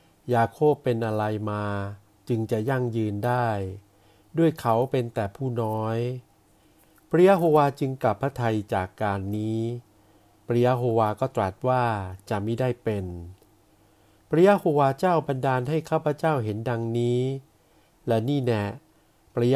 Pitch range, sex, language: 105-140 Hz, male, Thai